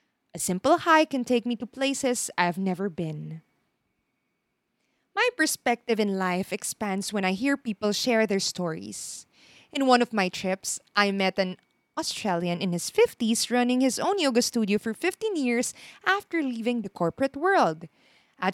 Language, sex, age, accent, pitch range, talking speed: English, female, 20-39, Filipino, 195-310 Hz, 160 wpm